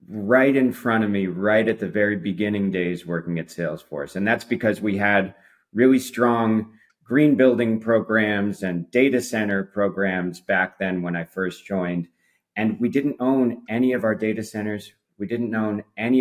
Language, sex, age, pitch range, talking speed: English, male, 40-59, 95-115 Hz, 175 wpm